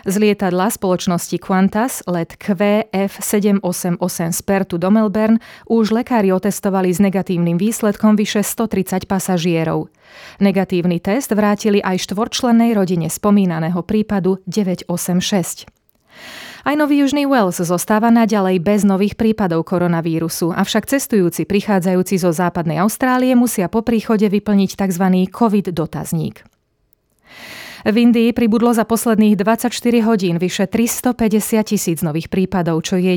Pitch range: 180-215 Hz